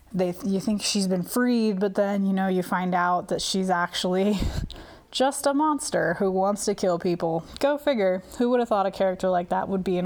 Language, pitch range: English, 180-210 Hz